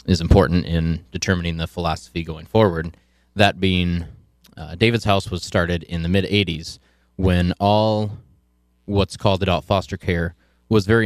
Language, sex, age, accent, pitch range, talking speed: English, male, 20-39, American, 80-100 Hz, 145 wpm